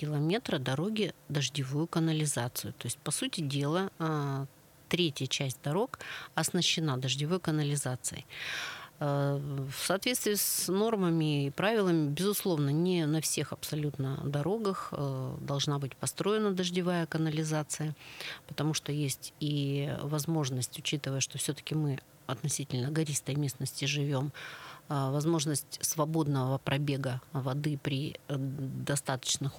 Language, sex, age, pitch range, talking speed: Russian, female, 40-59, 140-170 Hz, 100 wpm